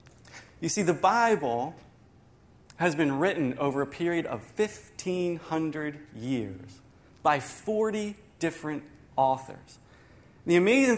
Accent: American